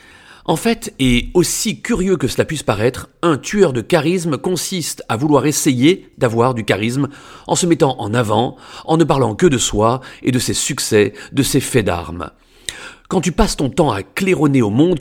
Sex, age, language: male, 40-59, French